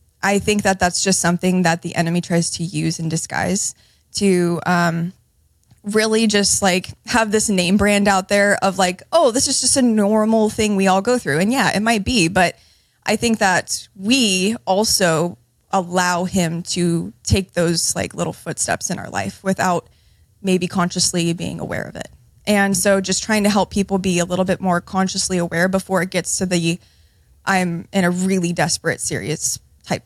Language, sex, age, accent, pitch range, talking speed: English, female, 20-39, American, 170-195 Hz, 185 wpm